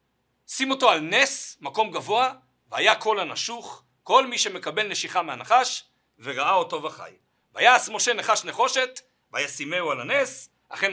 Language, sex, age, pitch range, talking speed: Hebrew, male, 60-79, 195-255 Hz, 135 wpm